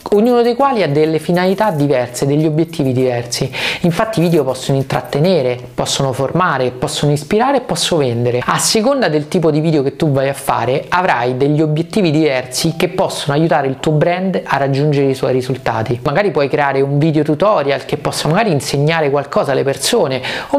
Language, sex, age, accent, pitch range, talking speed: Italian, male, 30-49, native, 140-175 Hz, 180 wpm